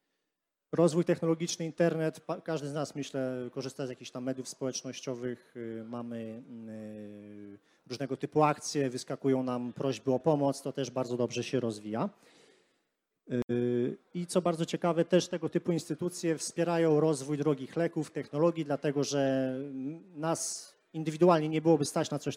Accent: native